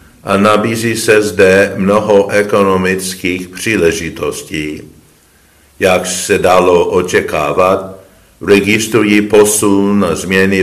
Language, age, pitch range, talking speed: Czech, 50-69, 85-105 Hz, 85 wpm